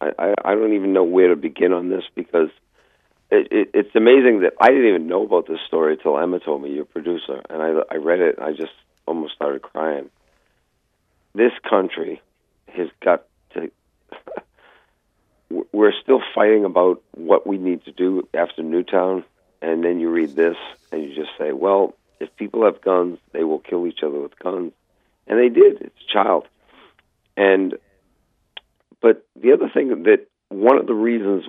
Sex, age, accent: male, 50-69, American